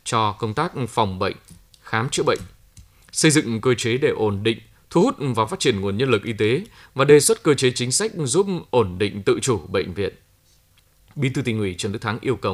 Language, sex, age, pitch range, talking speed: Vietnamese, male, 20-39, 105-140 Hz, 230 wpm